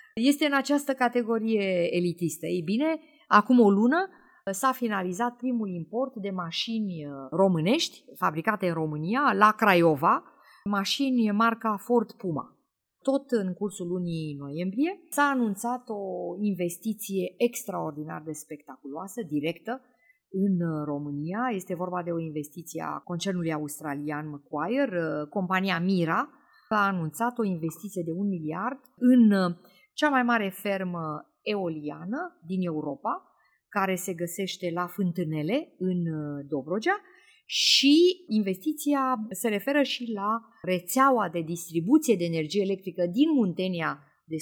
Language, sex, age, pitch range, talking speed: Romanian, female, 30-49, 170-235 Hz, 120 wpm